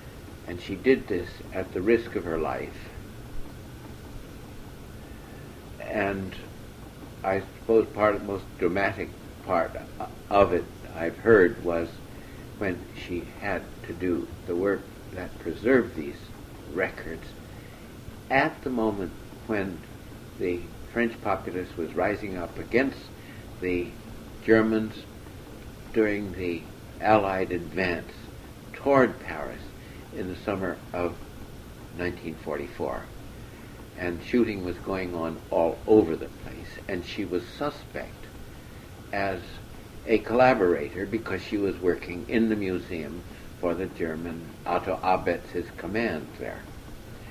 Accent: American